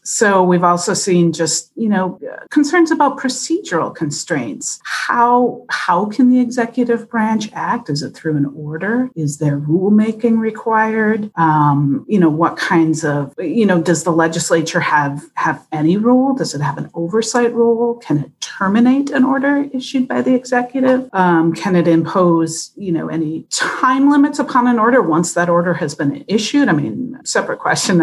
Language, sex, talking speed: English, female, 170 wpm